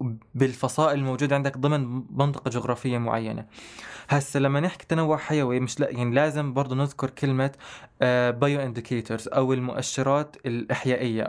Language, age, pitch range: Arabic, 20-39, 120-145 Hz